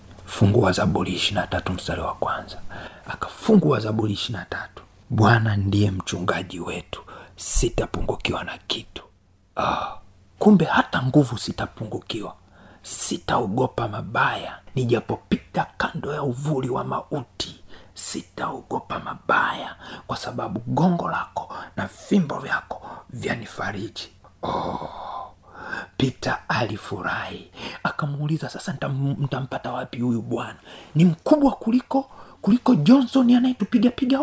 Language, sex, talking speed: Swahili, male, 95 wpm